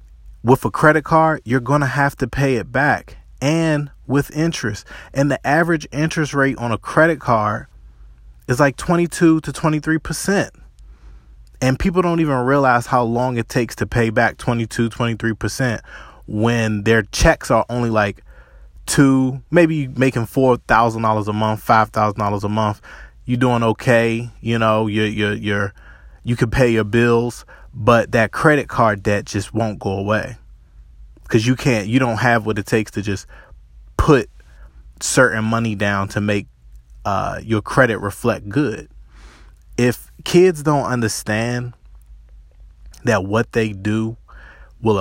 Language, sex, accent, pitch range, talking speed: English, male, American, 100-125 Hz, 155 wpm